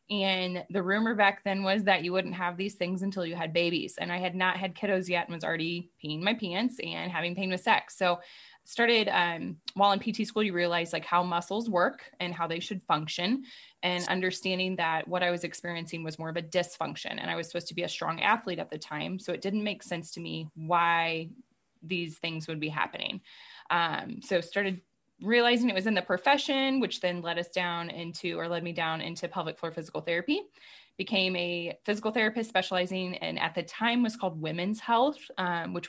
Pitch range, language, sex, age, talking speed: 170-205 Hz, English, female, 20-39, 215 wpm